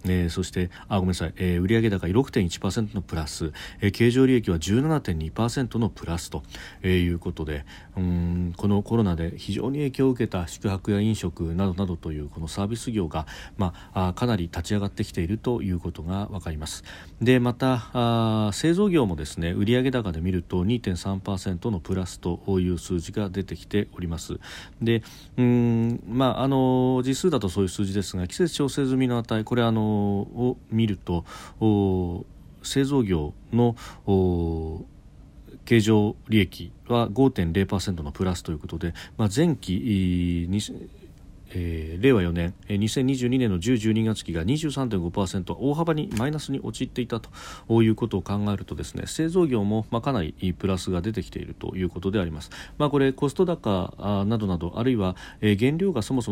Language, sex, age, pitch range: Japanese, male, 40-59, 90-120 Hz